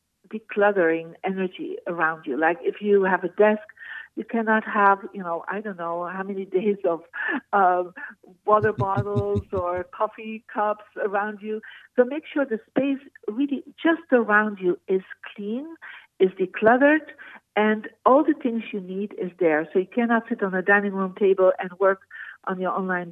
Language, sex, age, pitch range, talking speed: English, female, 60-79, 180-220 Hz, 170 wpm